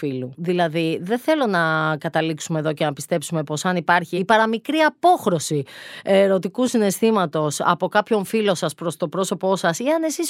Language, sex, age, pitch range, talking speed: Greek, female, 30-49, 170-230 Hz, 170 wpm